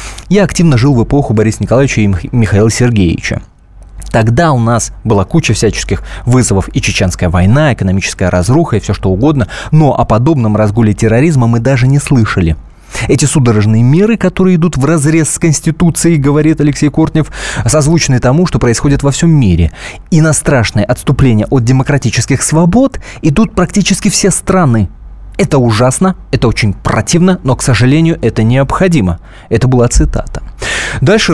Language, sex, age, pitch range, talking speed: Russian, male, 20-39, 110-155 Hz, 150 wpm